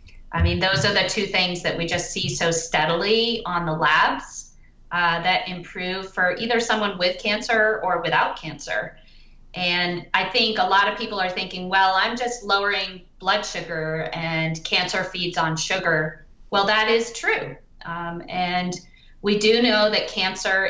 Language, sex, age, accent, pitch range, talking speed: English, female, 30-49, American, 170-200 Hz, 170 wpm